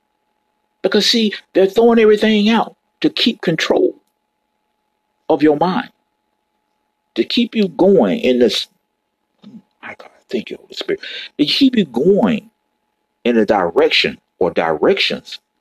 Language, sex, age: English, male, 50-69